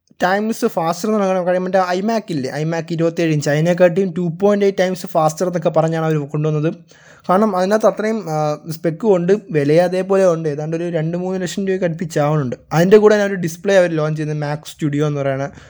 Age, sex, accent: 20-39, male, native